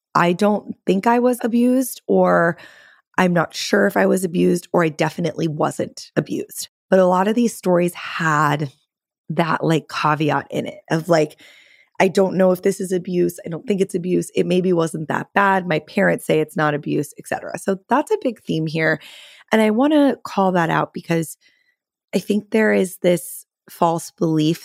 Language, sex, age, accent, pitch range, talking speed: English, female, 20-39, American, 160-205 Hz, 190 wpm